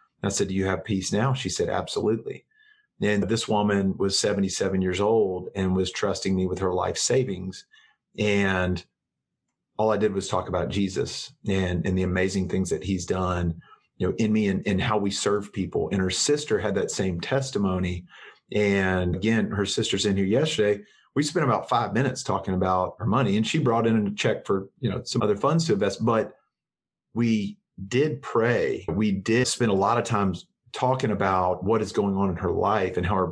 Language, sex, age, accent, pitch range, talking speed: English, male, 40-59, American, 95-105 Hz, 200 wpm